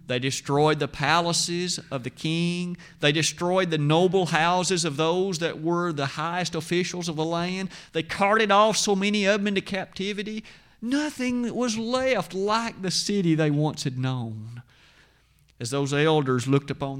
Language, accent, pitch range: English, American, 140-185 Hz